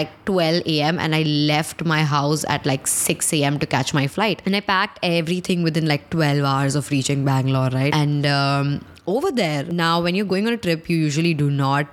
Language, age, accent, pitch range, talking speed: English, 20-39, Indian, 145-175 Hz, 210 wpm